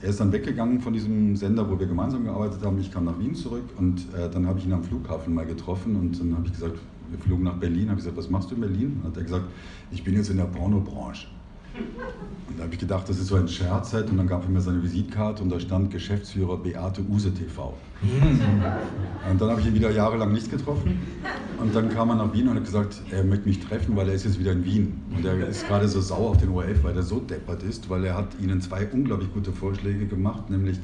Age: 50-69